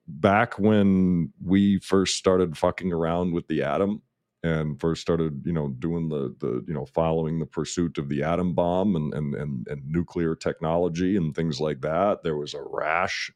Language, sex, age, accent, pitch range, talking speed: English, male, 40-59, American, 80-90 Hz, 185 wpm